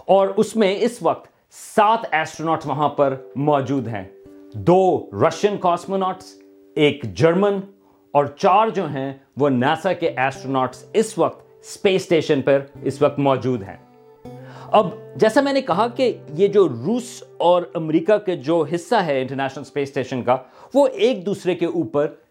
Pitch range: 145-205 Hz